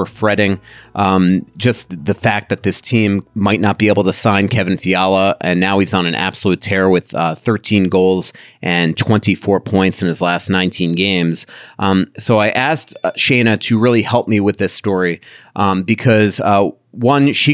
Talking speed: 180 wpm